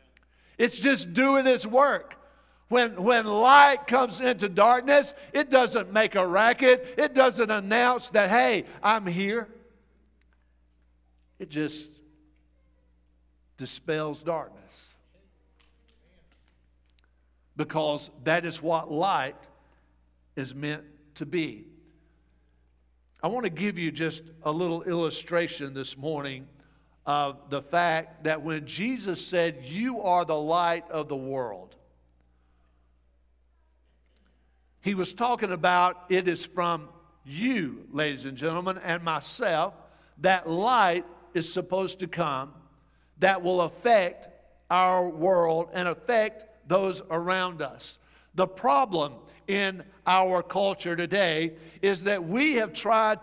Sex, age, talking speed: male, 50-69, 115 wpm